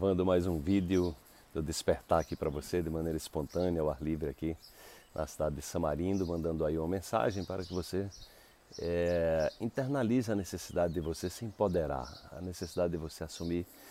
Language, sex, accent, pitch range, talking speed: Portuguese, male, Brazilian, 80-110 Hz, 170 wpm